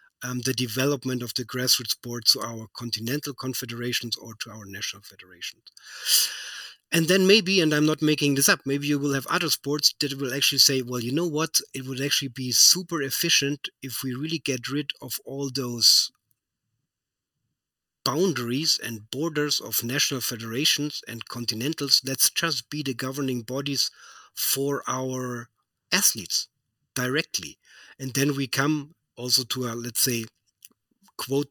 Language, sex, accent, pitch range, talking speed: English, male, German, 120-145 Hz, 155 wpm